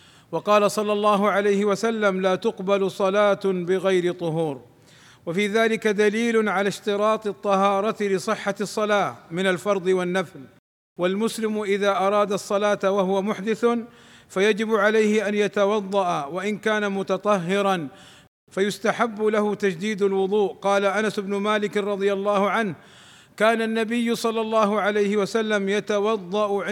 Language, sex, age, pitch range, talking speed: Arabic, male, 50-69, 190-215 Hz, 115 wpm